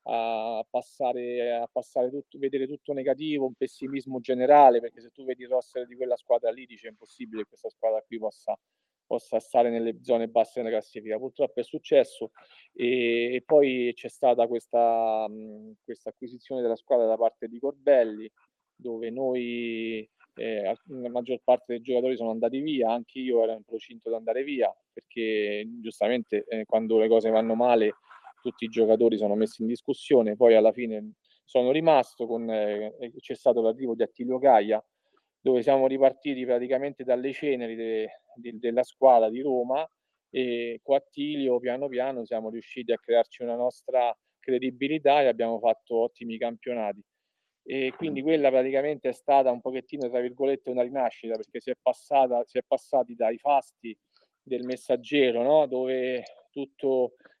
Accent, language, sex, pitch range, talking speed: native, Italian, male, 115-130 Hz, 160 wpm